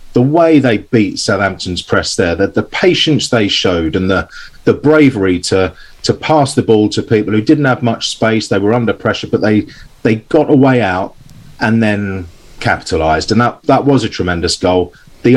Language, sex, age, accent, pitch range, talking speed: English, male, 30-49, British, 90-120 Hz, 195 wpm